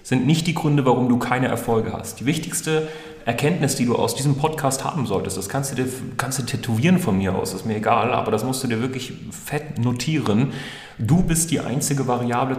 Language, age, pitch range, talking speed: German, 30-49, 110-135 Hz, 215 wpm